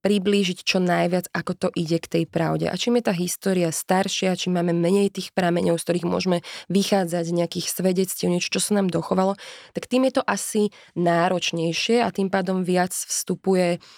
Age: 20-39